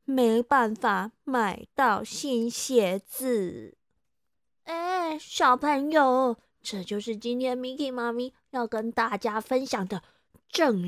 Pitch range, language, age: 225-285 Hz, Chinese, 20-39